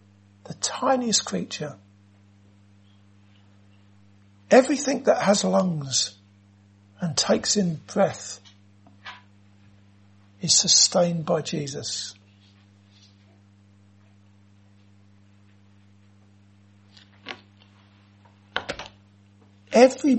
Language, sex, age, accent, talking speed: English, male, 60-79, British, 50 wpm